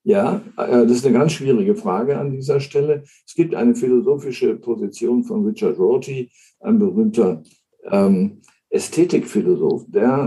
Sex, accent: male, German